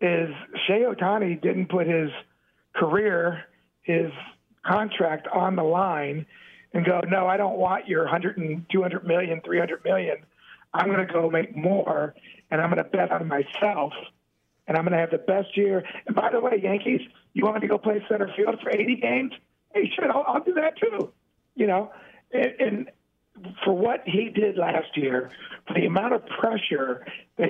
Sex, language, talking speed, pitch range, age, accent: male, English, 185 wpm, 160-200 Hz, 50-69, American